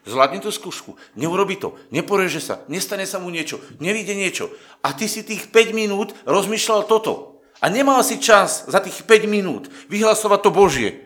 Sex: male